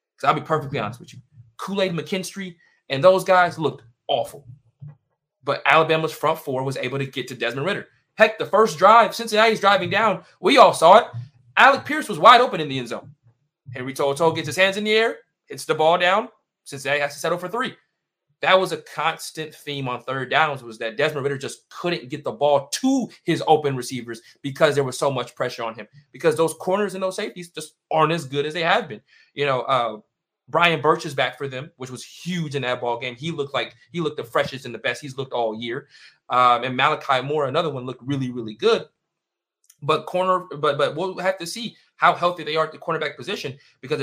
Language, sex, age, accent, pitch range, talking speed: English, male, 20-39, American, 125-175 Hz, 220 wpm